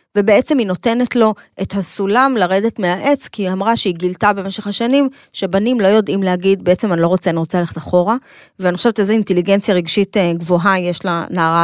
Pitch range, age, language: 180-225 Hz, 30-49, Hebrew